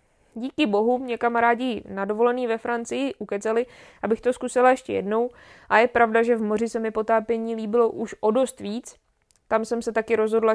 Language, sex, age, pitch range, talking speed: Czech, female, 20-39, 220-245 Hz, 180 wpm